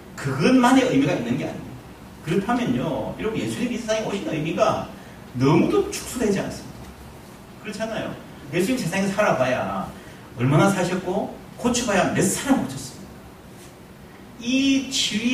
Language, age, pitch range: Korean, 40-59, 175-240 Hz